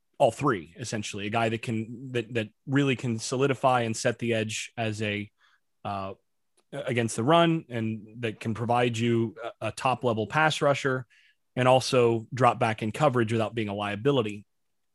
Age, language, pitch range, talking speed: 30-49, English, 115-135 Hz, 170 wpm